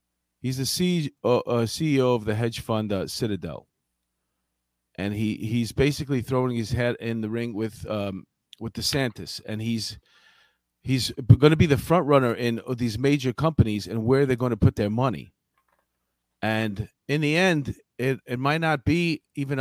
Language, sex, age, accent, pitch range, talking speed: English, male, 40-59, American, 105-135 Hz, 165 wpm